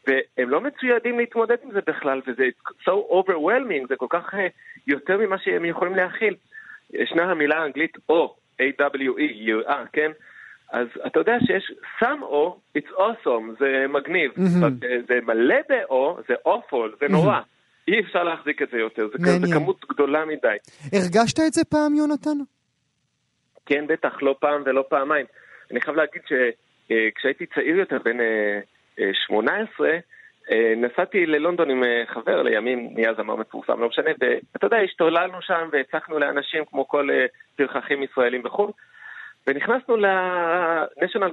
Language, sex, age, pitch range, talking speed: Hebrew, male, 40-59, 135-215 Hz, 135 wpm